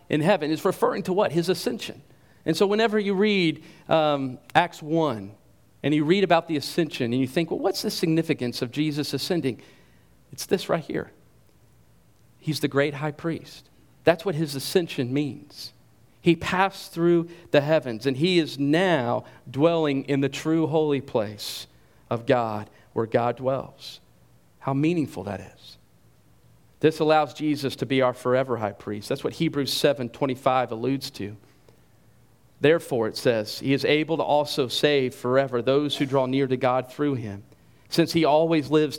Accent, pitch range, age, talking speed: American, 125-165 Hz, 50-69, 165 wpm